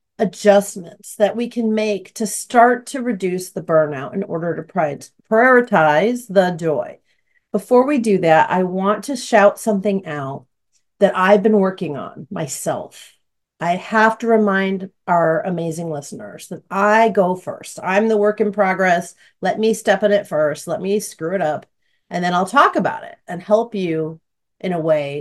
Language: English